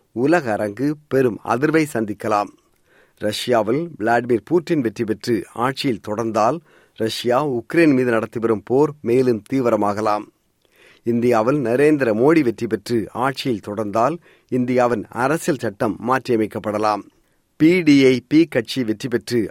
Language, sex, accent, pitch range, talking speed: Tamil, male, native, 110-135 Hz, 115 wpm